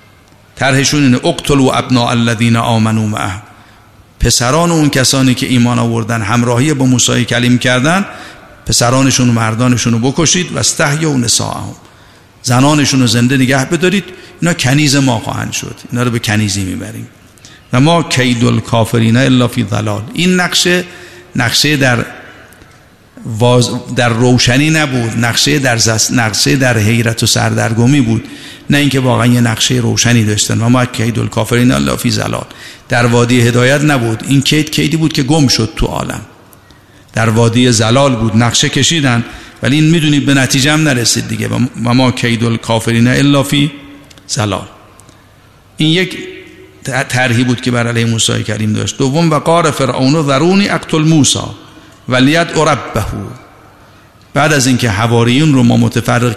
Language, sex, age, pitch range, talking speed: Persian, male, 50-69, 115-140 Hz, 145 wpm